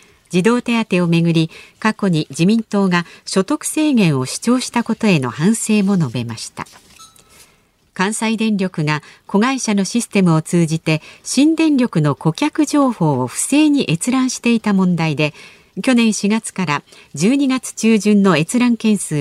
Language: Japanese